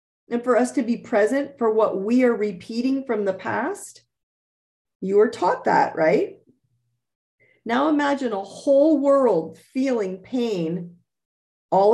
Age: 40-59